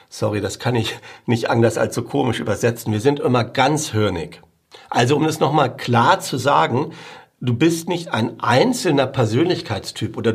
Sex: male